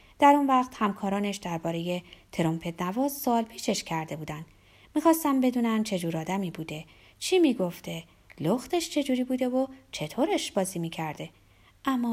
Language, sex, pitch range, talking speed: Persian, female, 185-290 Hz, 135 wpm